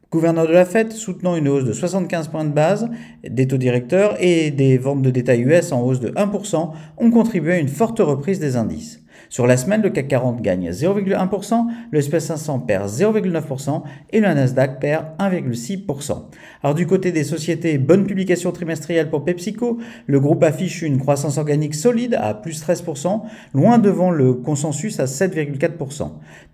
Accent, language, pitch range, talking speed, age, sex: French, French, 130-180 Hz, 170 wpm, 50-69, male